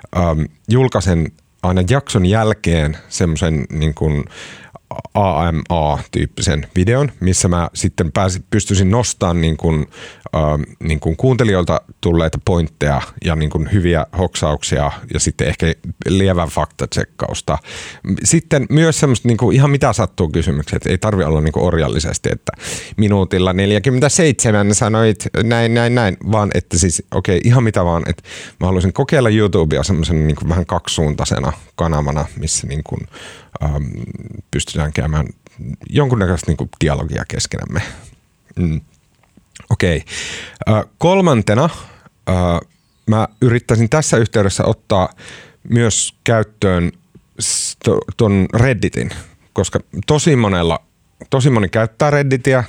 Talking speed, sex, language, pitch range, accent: 110 wpm, male, Finnish, 85-115 Hz, native